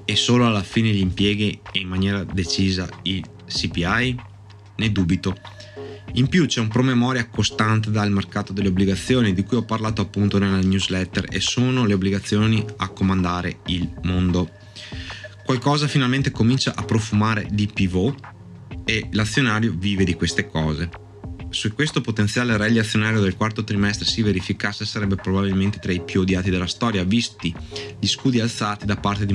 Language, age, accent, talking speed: Italian, 20-39, native, 155 wpm